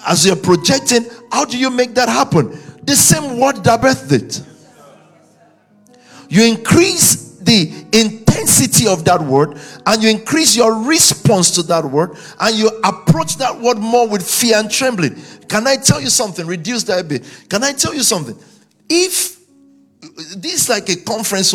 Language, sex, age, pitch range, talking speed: English, male, 50-69, 155-230 Hz, 165 wpm